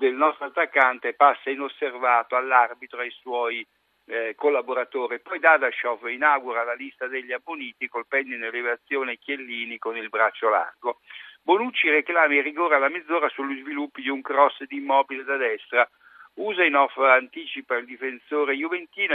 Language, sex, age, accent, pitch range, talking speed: Italian, male, 60-79, native, 125-160 Hz, 145 wpm